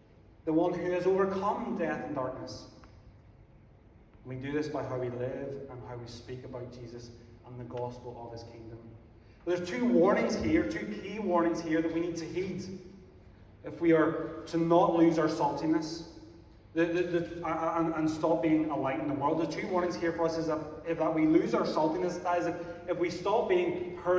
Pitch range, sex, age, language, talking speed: 110-175 Hz, male, 30-49, English, 190 wpm